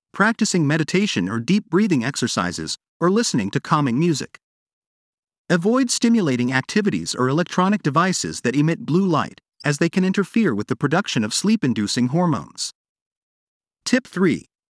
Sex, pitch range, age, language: male, 140-205 Hz, 40-59, English